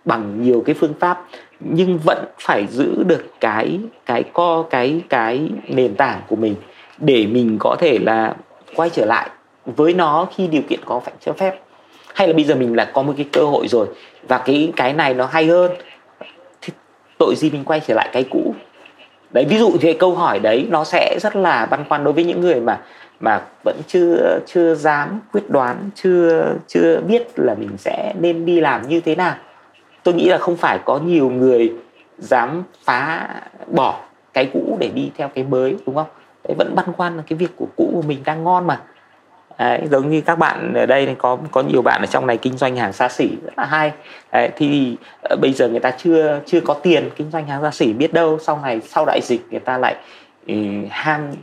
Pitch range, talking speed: 130-170 Hz, 215 wpm